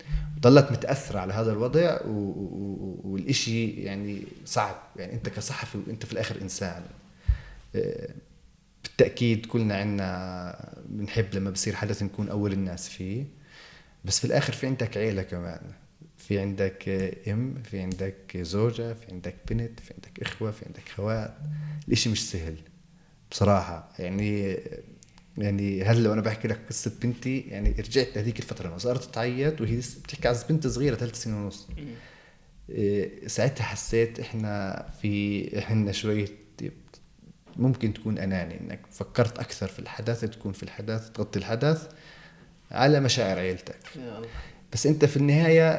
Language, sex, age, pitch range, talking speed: Arabic, male, 30-49, 100-125 Hz, 135 wpm